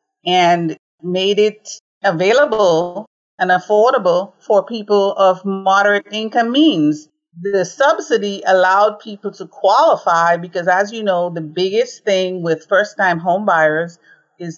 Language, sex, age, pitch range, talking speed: English, female, 40-59, 170-205 Hz, 130 wpm